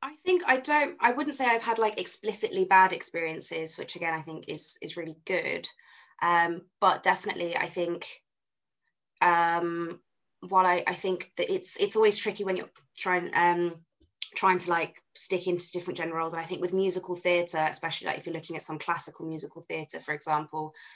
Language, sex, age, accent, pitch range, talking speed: English, female, 20-39, British, 155-185 Hz, 190 wpm